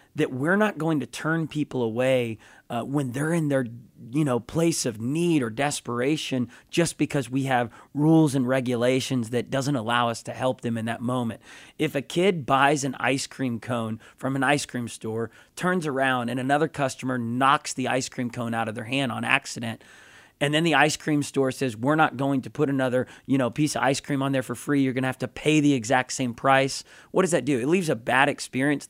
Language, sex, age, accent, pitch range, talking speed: English, male, 30-49, American, 125-150 Hz, 225 wpm